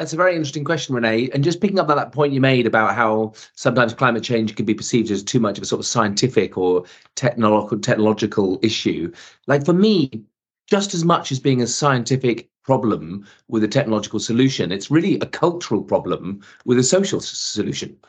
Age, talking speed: 30-49, 195 wpm